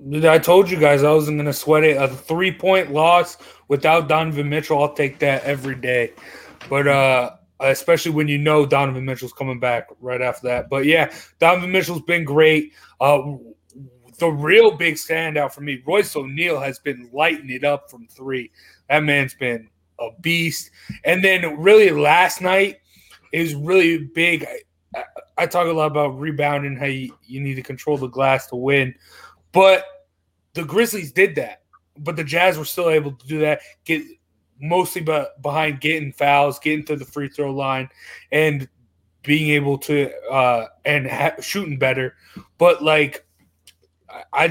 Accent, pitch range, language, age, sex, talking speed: American, 135-165 Hz, English, 20-39, male, 165 wpm